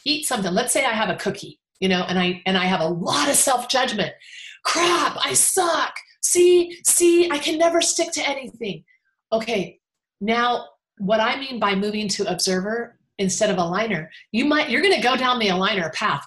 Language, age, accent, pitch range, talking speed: English, 40-59, American, 190-315 Hz, 190 wpm